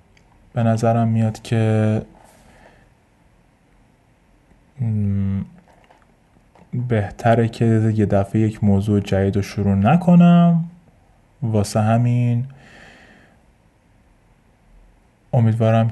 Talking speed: 65 wpm